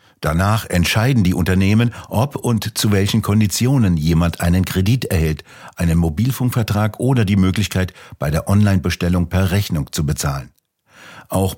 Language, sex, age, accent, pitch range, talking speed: German, male, 60-79, German, 85-105 Hz, 135 wpm